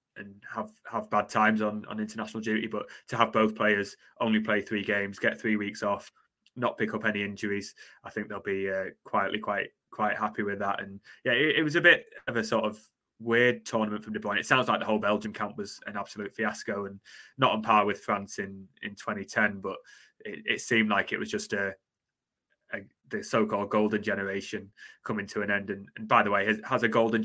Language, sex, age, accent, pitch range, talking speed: English, male, 20-39, British, 100-110 Hz, 225 wpm